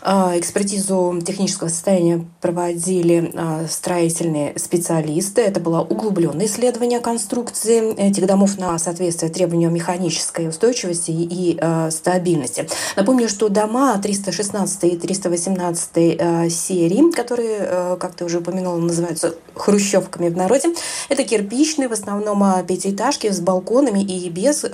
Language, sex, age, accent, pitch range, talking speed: Russian, female, 20-39, native, 170-210 Hz, 110 wpm